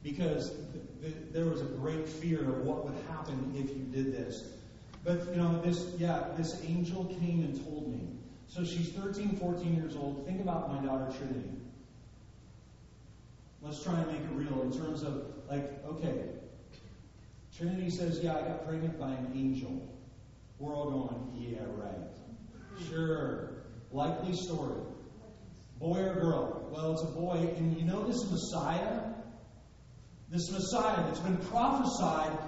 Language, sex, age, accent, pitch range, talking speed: English, male, 40-59, American, 130-185 Hz, 150 wpm